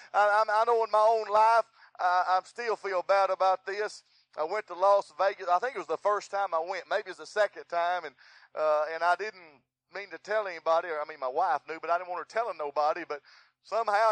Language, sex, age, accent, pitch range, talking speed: English, male, 40-59, American, 155-220 Hz, 245 wpm